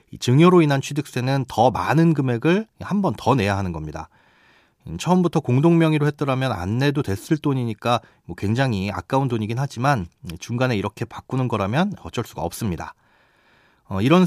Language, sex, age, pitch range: Korean, male, 30-49, 115-160 Hz